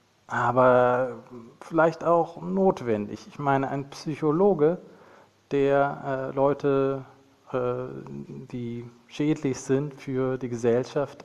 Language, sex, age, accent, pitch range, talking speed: German, male, 40-59, German, 110-135 Hz, 95 wpm